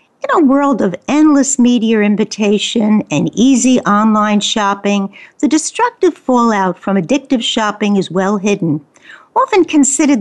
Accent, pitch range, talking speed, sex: American, 205-285 Hz, 130 wpm, female